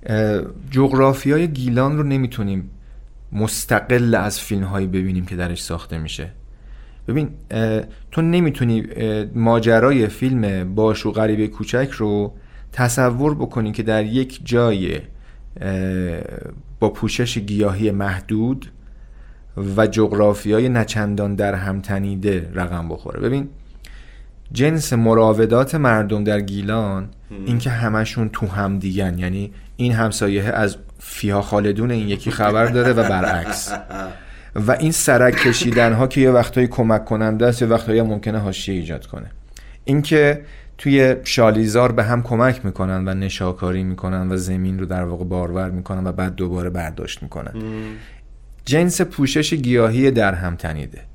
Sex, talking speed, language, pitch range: male, 125 wpm, Persian, 95-120 Hz